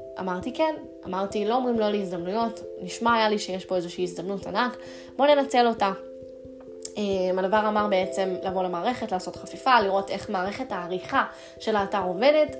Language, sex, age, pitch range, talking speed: Hebrew, female, 20-39, 190-245 Hz, 150 wpm